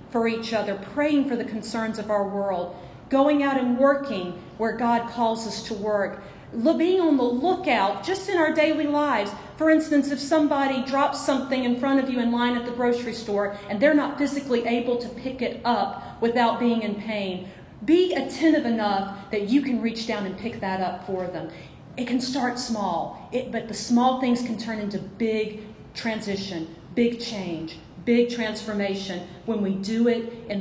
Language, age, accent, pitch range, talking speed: English, 40-59, American, 195-245 Hz, 185 wpm